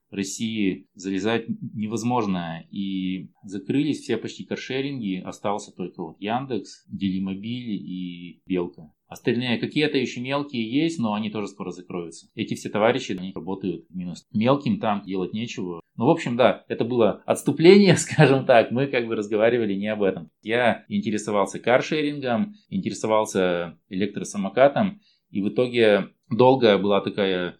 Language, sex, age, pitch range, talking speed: Russian, male, 20-39, 95-125 Hz, 135 wpm